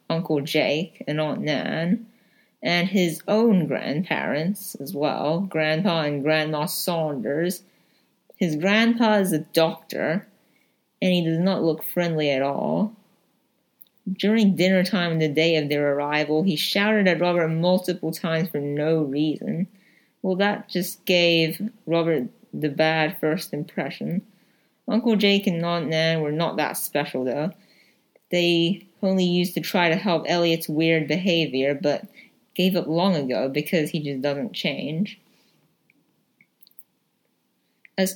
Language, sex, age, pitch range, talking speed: English, female, 30-49, 155-200 Hz, 135 wpm